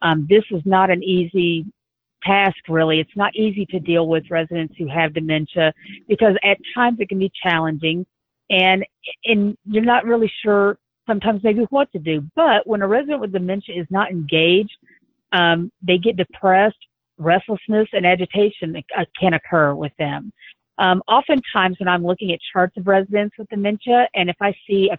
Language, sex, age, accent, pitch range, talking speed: English, female, 50-69, American, 170-205 Hz, 175 wpm